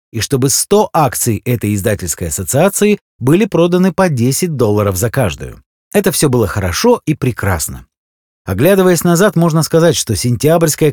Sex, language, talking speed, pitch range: male, Russian, 145 wpm, 115-170 Hz